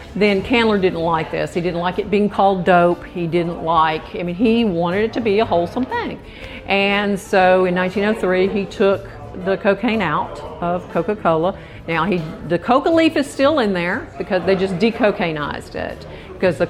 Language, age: English, 50-69